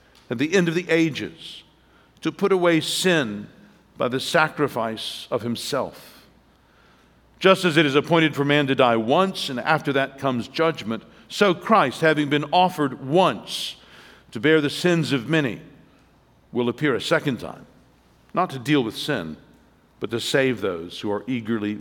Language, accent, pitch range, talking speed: English, American, 135-175 Hz, 160 wpm